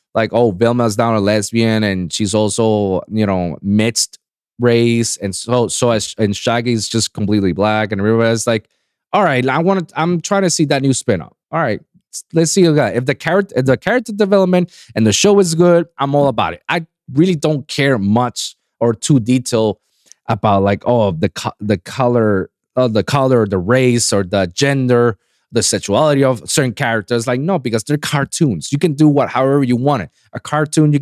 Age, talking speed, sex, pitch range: 20-39, 200 wpm, male, 110-155 Hz